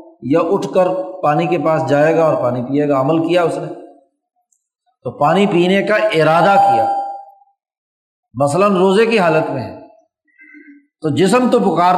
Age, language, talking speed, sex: 50-69, Urdu, 155 wpm, male